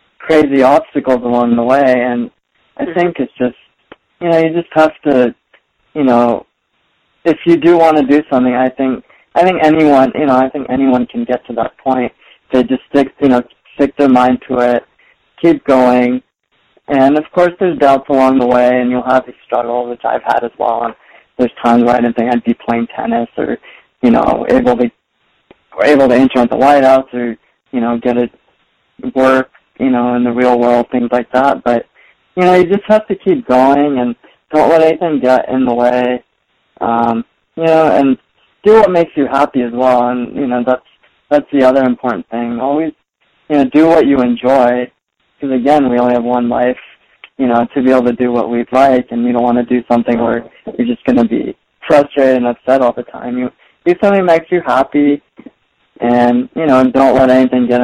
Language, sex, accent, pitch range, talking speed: English, male, American, 120-145 Hz, 210 wpm